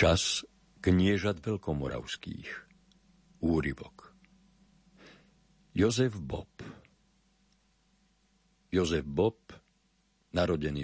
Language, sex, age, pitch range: Slovak, male, 50-69, 80-115 Hz